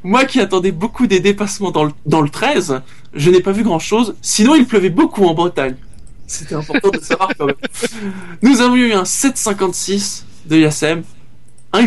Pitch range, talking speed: 175-230 Hz, 180 wpm